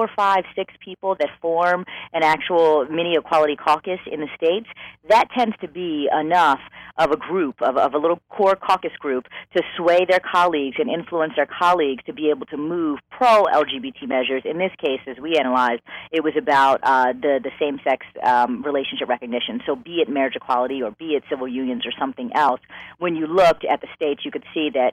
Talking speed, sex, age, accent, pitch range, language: 195 wpm, female, 40-59, American, 135-190 Hz, English